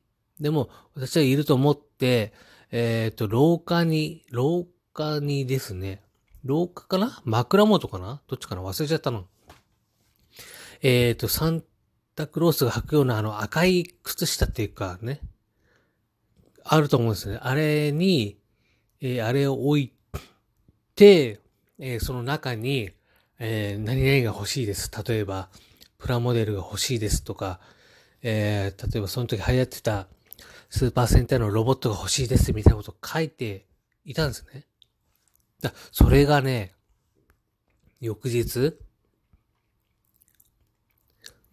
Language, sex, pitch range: Japanese, male, 110-145 Hz